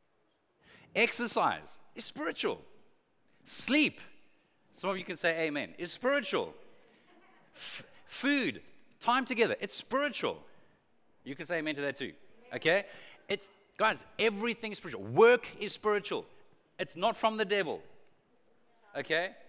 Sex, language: male, English